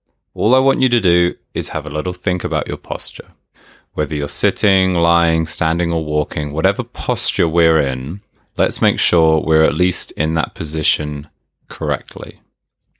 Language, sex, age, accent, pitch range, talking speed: English, male, 20-39, British, 80-105 Hz, 160 wpm